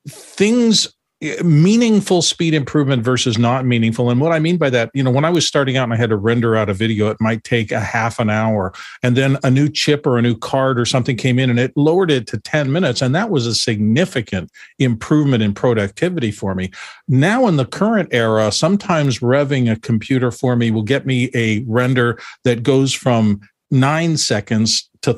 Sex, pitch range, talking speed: male, 110-145 Hz, 205 wpm